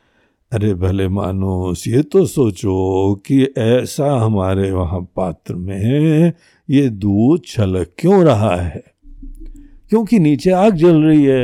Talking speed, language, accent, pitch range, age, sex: 125 wpm, Hindi, native, 95-155 Hz, 60-79, male